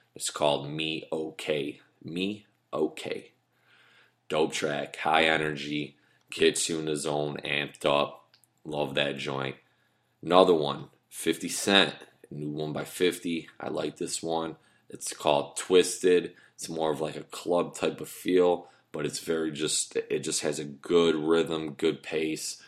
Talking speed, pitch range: 145 wpm, 75-80 Hz